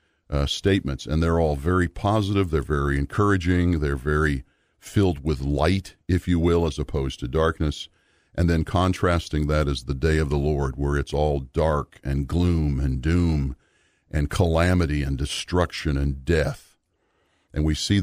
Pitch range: 75-90 Hz